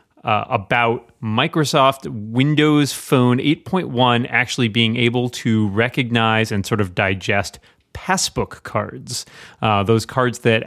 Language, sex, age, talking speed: English, male, 30-49, 120 wpm